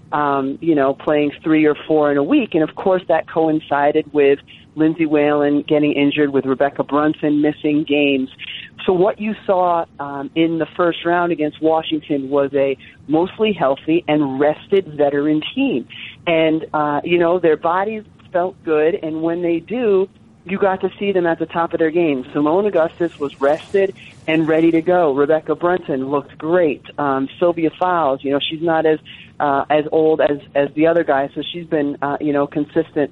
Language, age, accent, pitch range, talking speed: English, 40-59, American, 145-175 Hz, 185 wpm